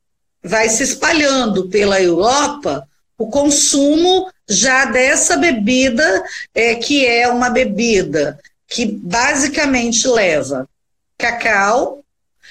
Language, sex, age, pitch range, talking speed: Portuguese, female, 50-69, 220-275 Hz, 85 wpm